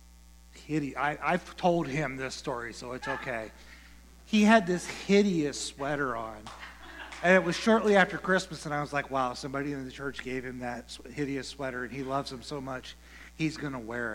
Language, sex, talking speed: English, male, 185 wpm